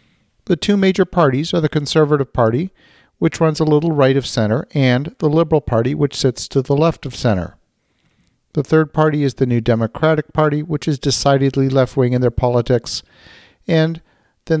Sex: male